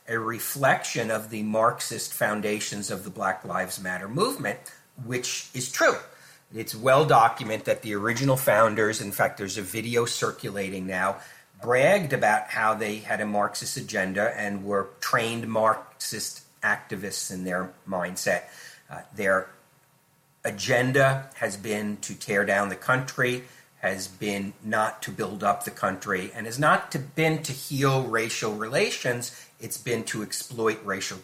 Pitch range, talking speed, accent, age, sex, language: 105-130 Hz, 145 wpm, American, 50-69, male, English